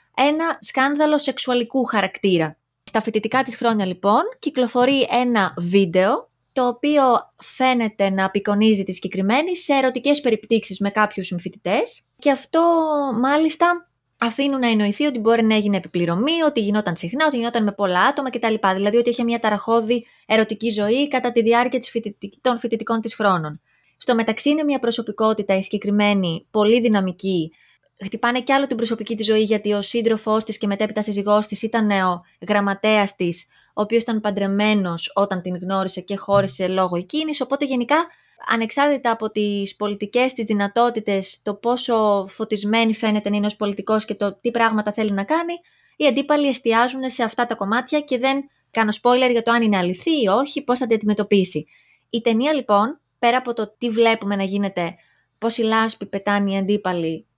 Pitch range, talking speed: 200-250 Hz, 165 wpm